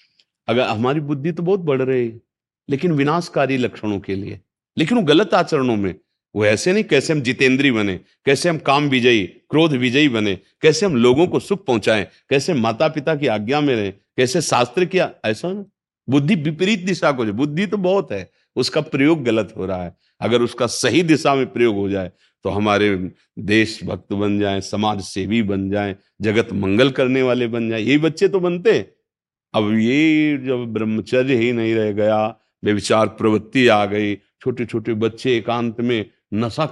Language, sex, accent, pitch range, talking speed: Hindi, male, native, 110-145 Hz, 185 wpm